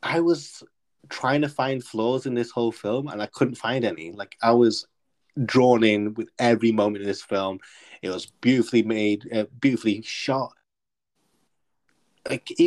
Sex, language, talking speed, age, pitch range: male, English, 160 wpm, 20-39, 100-125 Hz